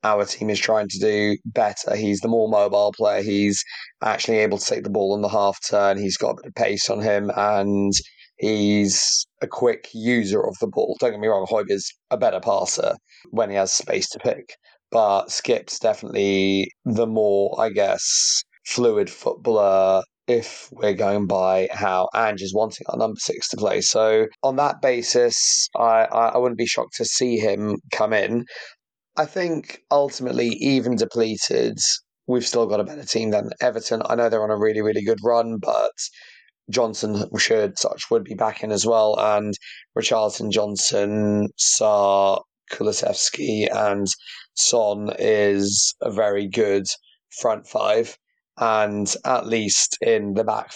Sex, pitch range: male, 100-115 Hz